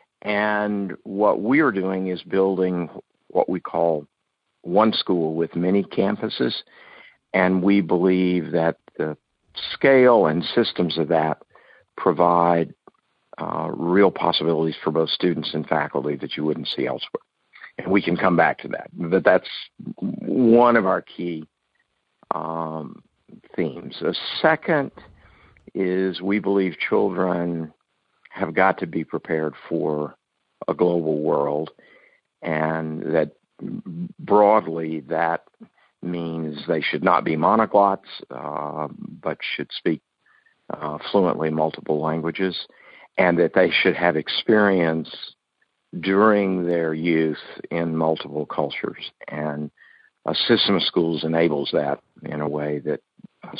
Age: 50-69